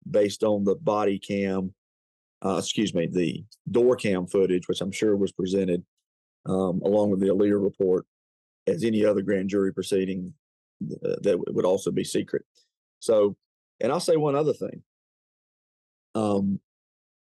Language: English